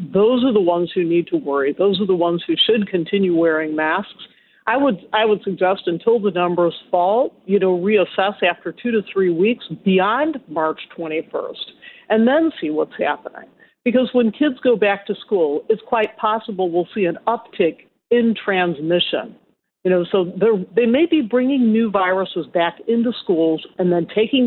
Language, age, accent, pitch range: English, 50-69, American, 180-245 Hz